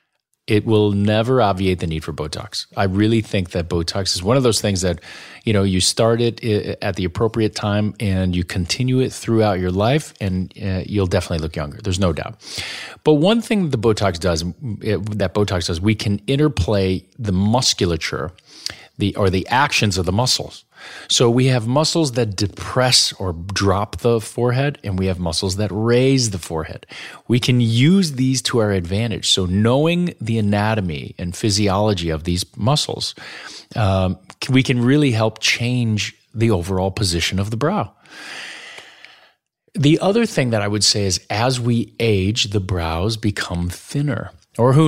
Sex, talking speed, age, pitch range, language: male, 170 wpm, 30-49, 95-120 Hz, English